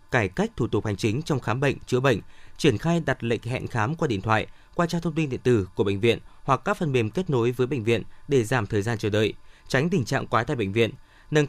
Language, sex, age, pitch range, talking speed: Vietnamese, male, 20-39, 110-150 Hz, 270 wpm